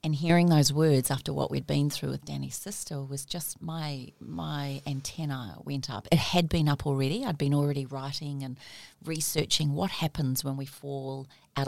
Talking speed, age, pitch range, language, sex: 185 wpm, 40-59, 140-165 Hz, English, female